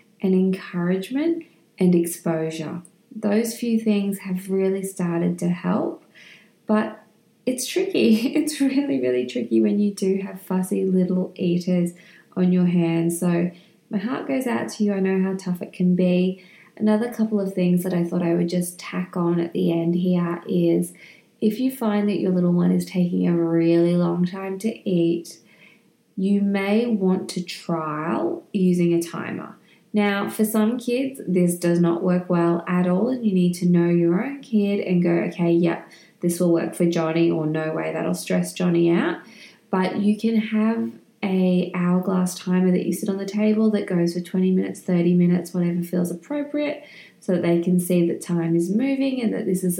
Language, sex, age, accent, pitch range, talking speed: English, female, 20-39, Australian, 175-210 Hz, 185 wpm